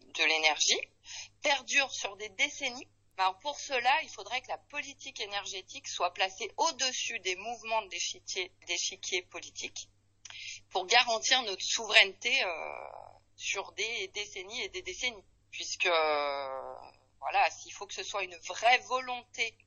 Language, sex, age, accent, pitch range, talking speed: French, female, 30-49, French, 170-245 Hz, 135 wpm